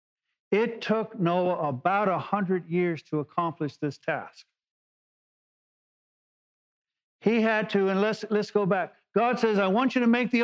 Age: 50-69